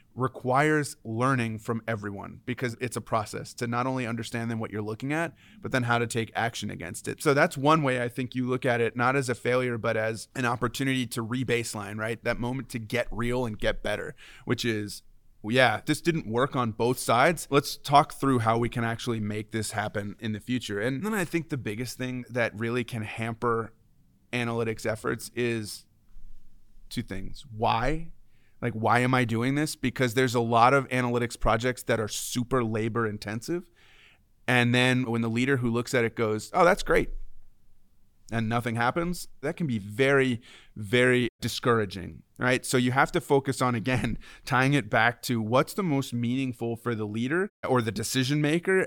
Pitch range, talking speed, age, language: 110-130 Hz, 190 wpm, 30-49, English